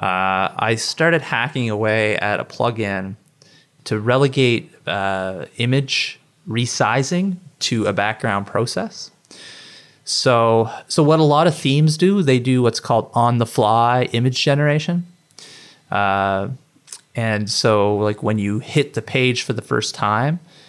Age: 30-49